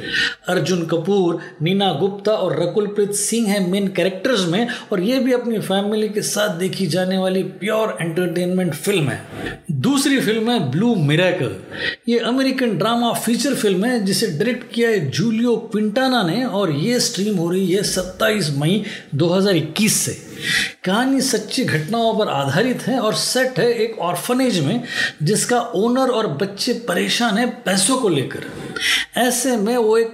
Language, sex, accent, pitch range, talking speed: Hindi, male, native, 185-230 Hz, 155 wpm